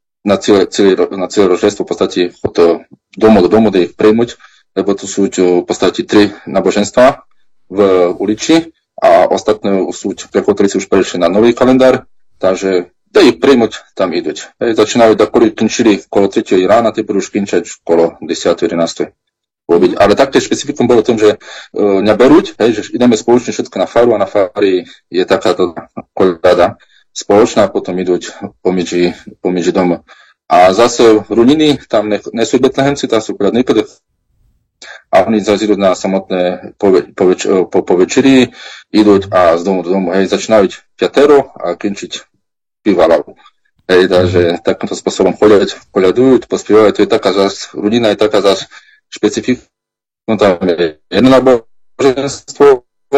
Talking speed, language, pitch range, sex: 150 wpm, Slovak, 90-125 Hz, male